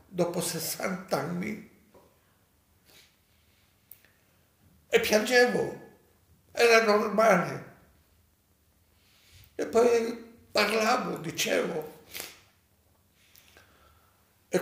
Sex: male